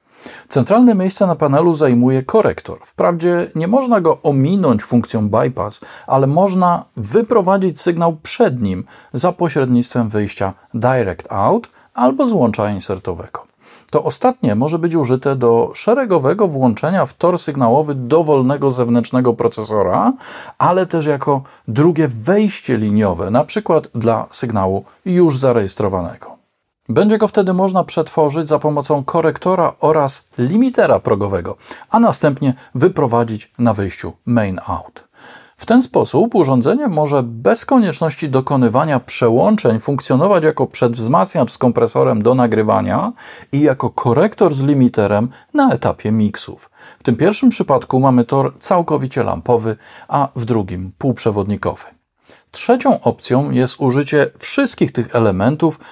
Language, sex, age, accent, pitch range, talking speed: Polish, male, 40-59, native, 120-175 Hz, 120 wpm